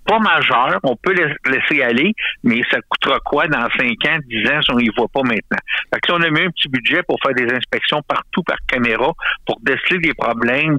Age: 60-79